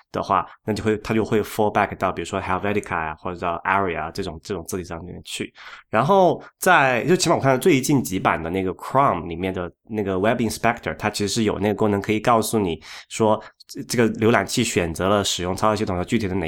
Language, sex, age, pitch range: Chinese, male, 20-39, 100-120 Hz